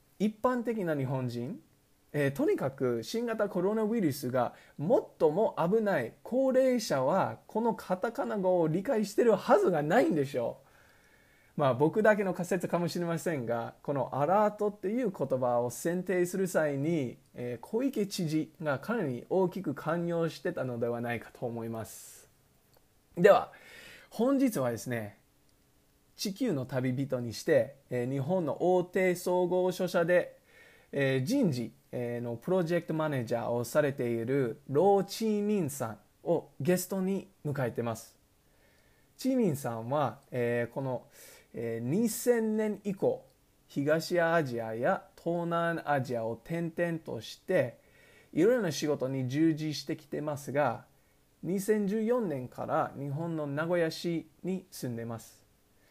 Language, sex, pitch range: English, male, 130-195 Hz